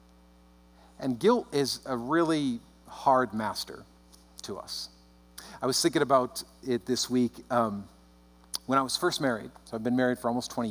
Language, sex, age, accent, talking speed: English, male, 50-69, American, 165 wpm